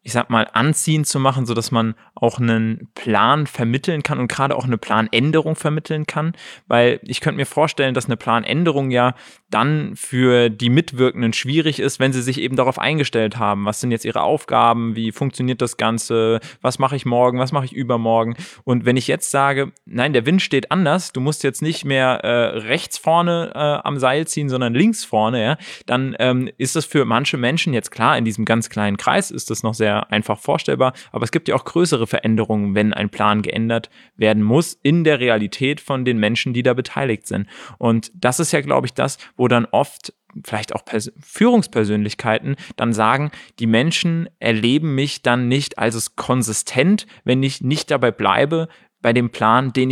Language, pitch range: German, 115-150 Hz